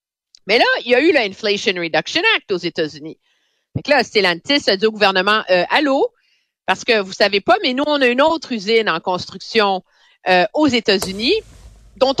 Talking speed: 190 wpm